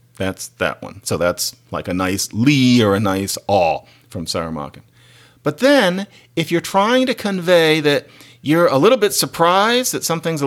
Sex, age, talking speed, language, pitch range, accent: male, 40-59, 180 wpm, English, 120-175 Hz, American